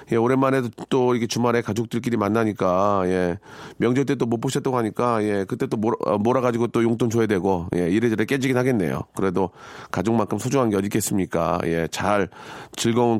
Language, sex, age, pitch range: Korean, male, 40-59, 105-140 Hz